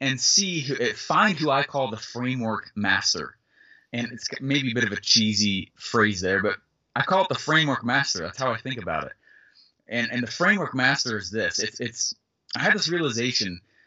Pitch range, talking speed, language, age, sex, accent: 115-155 Hz, 200 wpm, English, 20-39, male, American